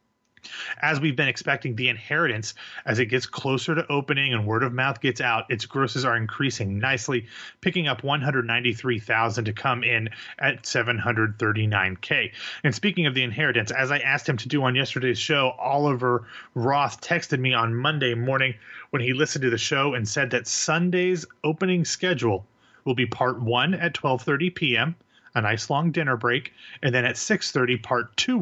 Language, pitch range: English, 120-150 Hz